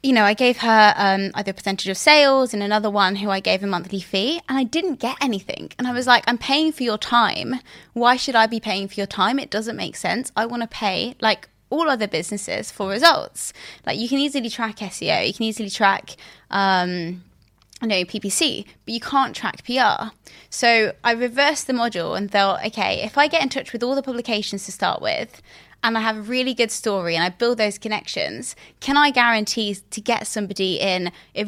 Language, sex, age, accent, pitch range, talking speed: English, female, 20-39, British, 205-255 Hz, 220 wpm